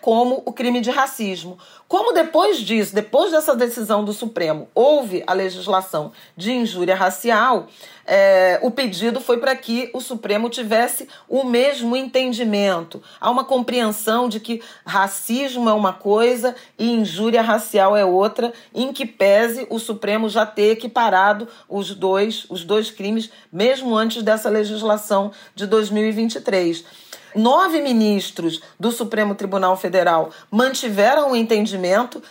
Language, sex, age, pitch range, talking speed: Portuguese, female, 40-59, 190-245 Hz, 130 wpm